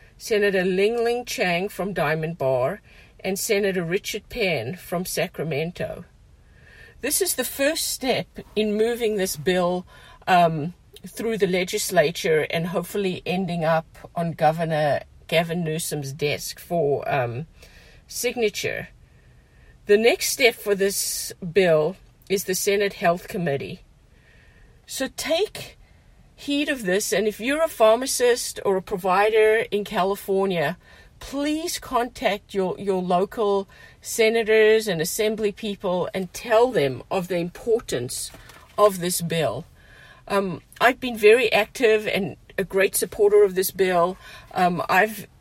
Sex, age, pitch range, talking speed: female, 50-69, 175-220 Hz, 125 wpm